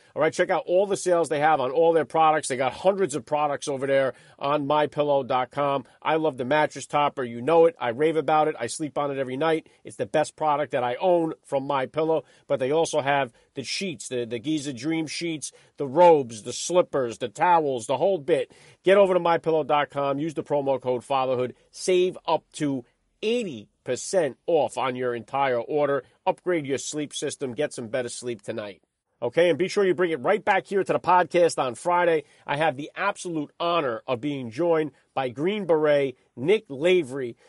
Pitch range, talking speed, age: 140-170 Hz, 200 wpm, 40-59